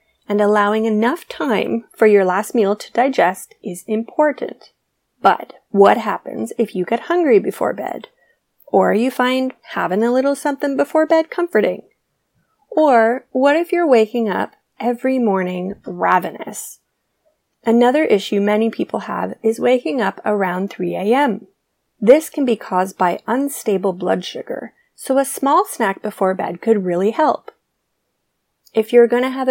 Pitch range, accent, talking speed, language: 200-260 Hz, American, 145 wpm, English